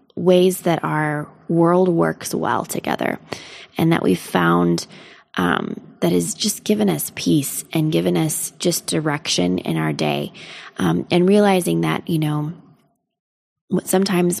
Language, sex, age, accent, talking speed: English, female, 20-39, American, 140 wpm